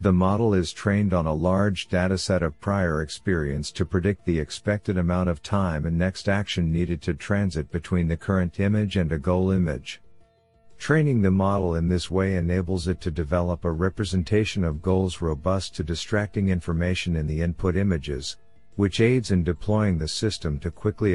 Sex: male